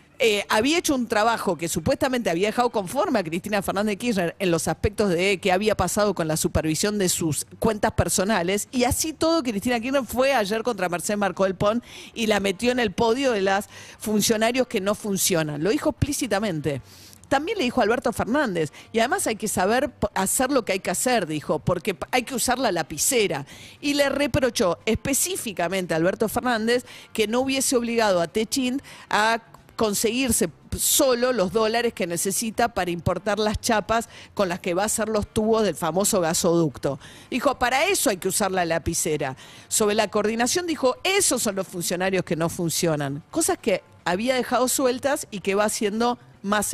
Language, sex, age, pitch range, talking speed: Spanish, female, 50-69, 185-245 Hz, 185 wpm